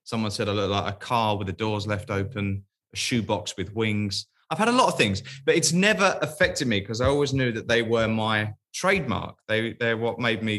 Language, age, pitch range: English, 20-39, 100-130 Hz